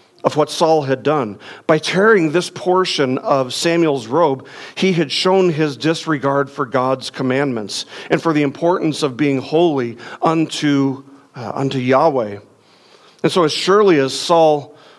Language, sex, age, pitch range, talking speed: English, male, 50-69, 130-165 Hz, 145 wpm